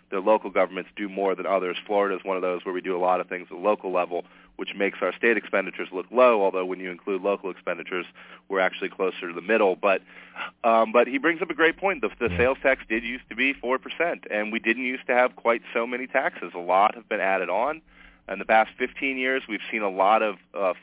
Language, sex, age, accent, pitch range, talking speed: English, male, 30-49, American, 95-120 Hz, 250 wpm